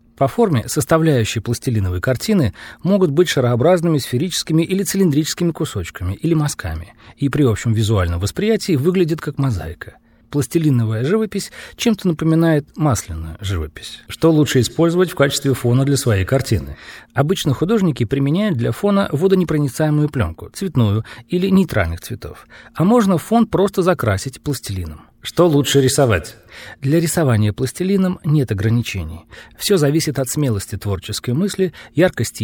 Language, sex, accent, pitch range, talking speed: Russian, male, native, 110-165 Hz, 130 wpm